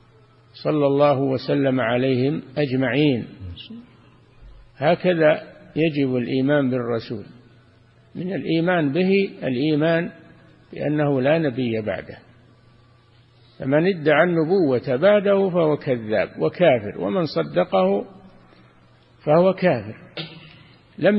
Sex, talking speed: male, 80 wpm